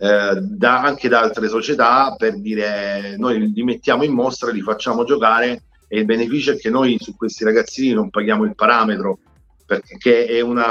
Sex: male